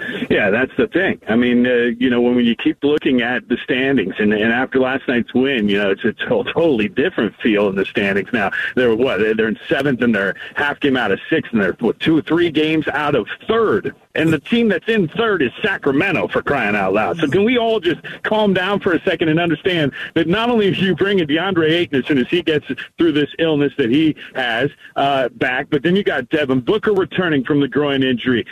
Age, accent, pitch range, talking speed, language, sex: 50-69, American, 135-180 Hz, 230 wpm, English, male